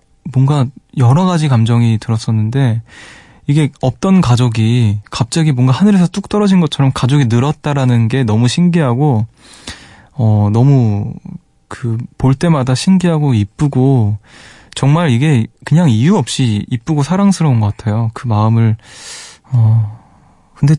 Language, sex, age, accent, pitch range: Korean, male, 20-39, native, 110-145 Hz